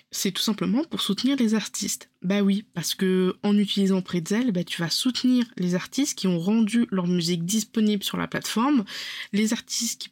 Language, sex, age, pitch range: French, female, 20-39, 180-215 Hz